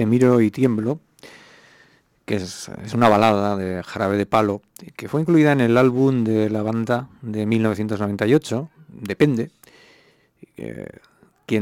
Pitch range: 100-115 Hz